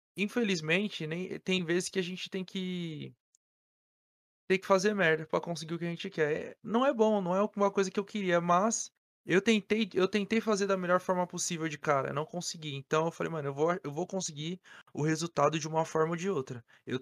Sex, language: male, Portuguese